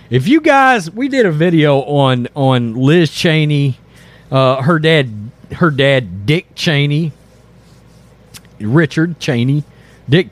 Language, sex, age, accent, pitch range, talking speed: English, male, 40-59, American, 125-185 Hz, 120 wpm